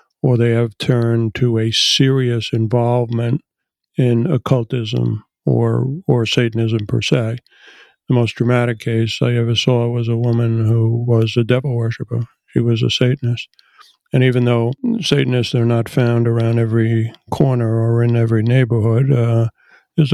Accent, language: American, English